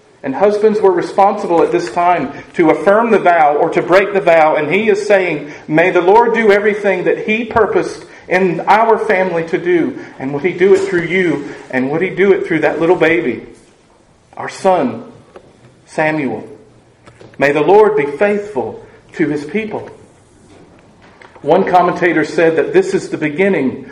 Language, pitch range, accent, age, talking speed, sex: English, 160-205 Hz, American, 40-59, 170 wpm, male